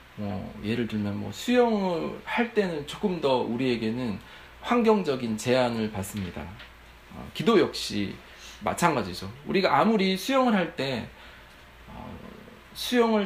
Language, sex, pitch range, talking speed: English, male, 100-170 Hz, 95 wpm